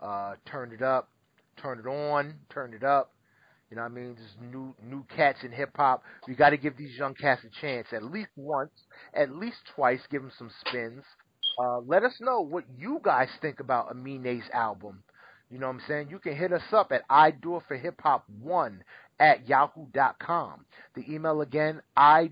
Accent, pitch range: American, 130-160 Hz